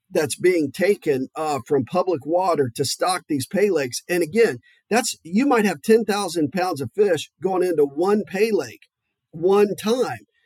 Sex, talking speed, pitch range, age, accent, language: male, 165 wpm, 155-225 Hz, 40-59, American, English